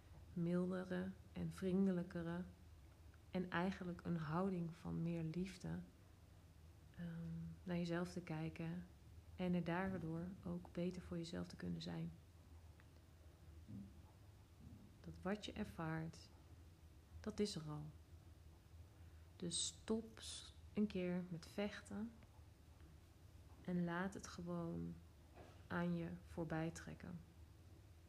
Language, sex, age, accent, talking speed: Dutch, female, 30-49, Dutch, 100 wpm